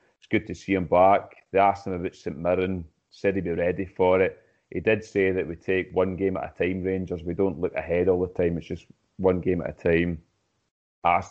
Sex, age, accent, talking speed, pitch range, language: male, 30-49, British, 240 wpm, 85-105 Hz, English